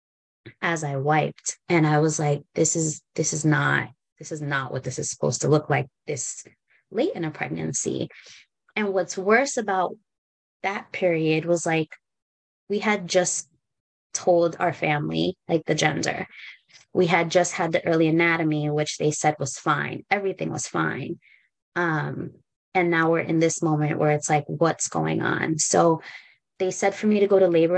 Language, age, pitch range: English, 20-39, 150-180 Hz